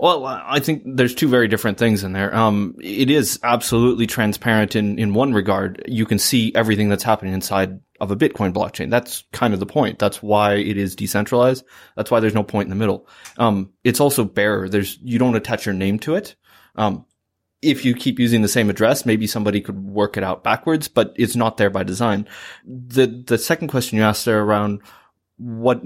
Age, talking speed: 20-39, 210 wpm